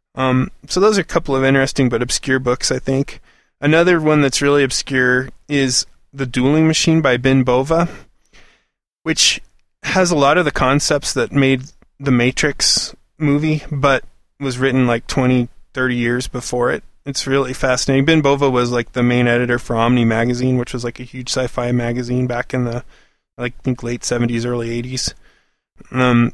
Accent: American